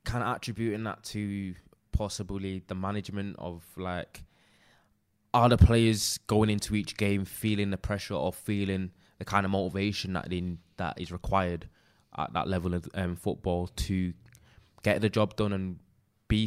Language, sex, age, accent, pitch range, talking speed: English, male, 20-39, British, 95-110 Hz, 155 wpm